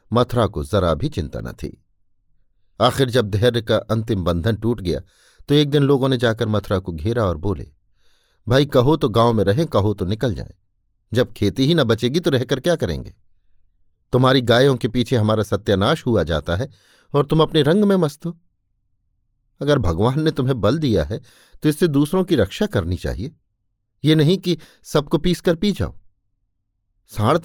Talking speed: 180 wpm